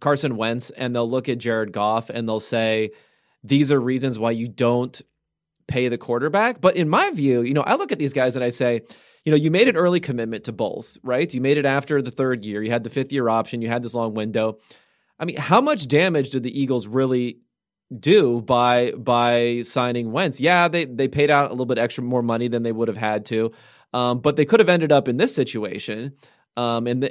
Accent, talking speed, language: American, 230 wpm, English